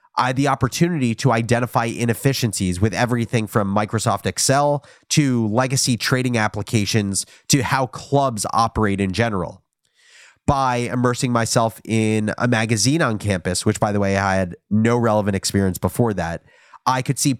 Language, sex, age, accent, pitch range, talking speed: English, male, 30-49, American, 105-130 Hz, 150 wpm